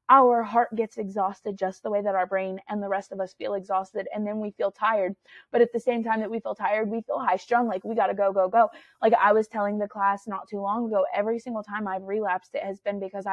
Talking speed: 275 wpm